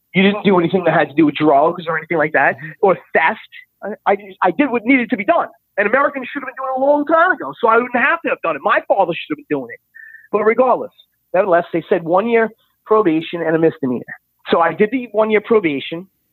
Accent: American